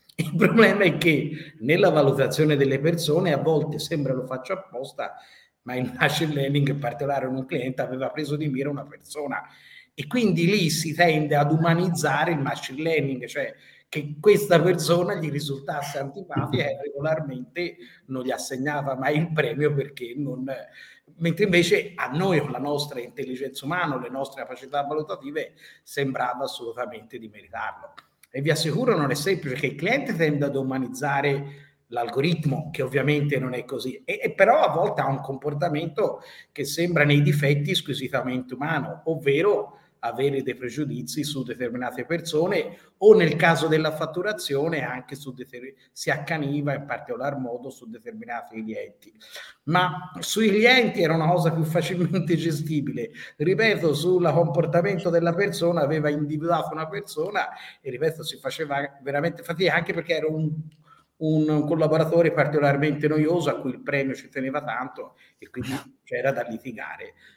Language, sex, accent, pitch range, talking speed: Italian, male, native, 140-170 Hz, 150 wpm